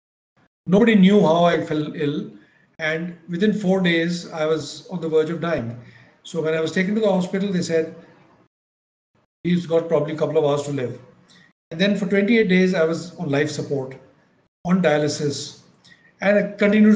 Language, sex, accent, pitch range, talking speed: English, male, Indian, 155-200 Hz, 180 wpm